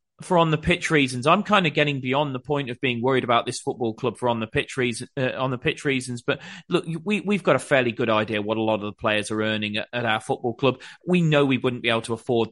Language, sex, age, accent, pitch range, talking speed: English, male, 30-49, British, 115-140 Hz, 285 wpm